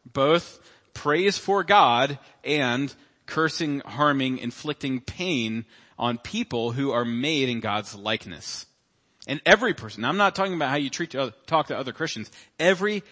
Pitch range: 115-150 Hz